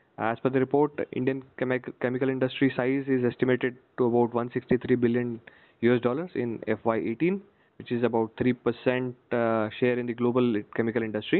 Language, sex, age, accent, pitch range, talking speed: English, male, 20-39, Indian, 115-130 Hz, 160 wpm